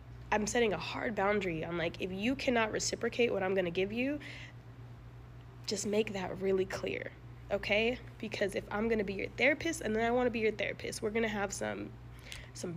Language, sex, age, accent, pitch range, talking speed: English, female, 20-39, American, 165-215 Hz, 195 wpm